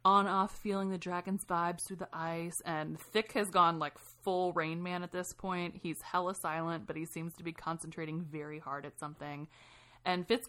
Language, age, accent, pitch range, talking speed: English, 30-49, American, 150-185 Hz, 200 wpm